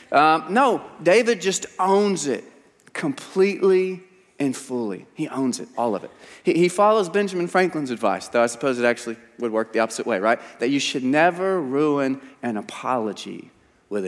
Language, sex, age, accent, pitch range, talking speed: English, male, 30-49, American, 110-145 Hz, 170 wpm